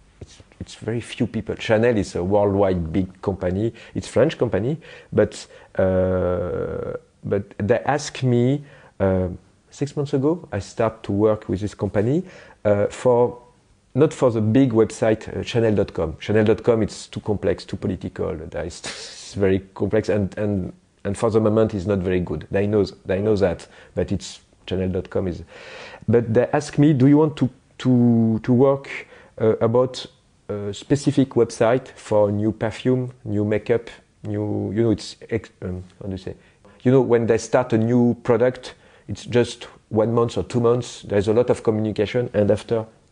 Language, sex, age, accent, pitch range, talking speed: English, male, 40-59, French, 100-125 Hz, 165 wpm